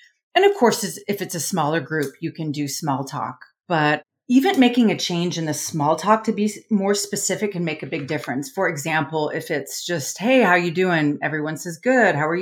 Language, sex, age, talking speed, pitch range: English, female, 30-49, 220 wpm, 150-185 Hz